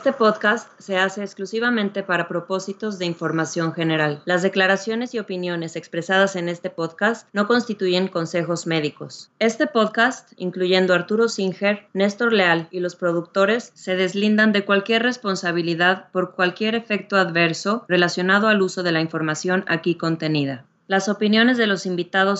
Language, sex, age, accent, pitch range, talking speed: Spanish, female, 20-39, Mexican, 170-205 Hz, 145 wpm